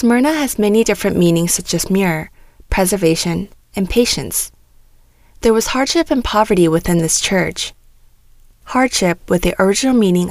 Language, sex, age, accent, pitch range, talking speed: English, female, 20-39, American, 170-220 Hz, 140 wpm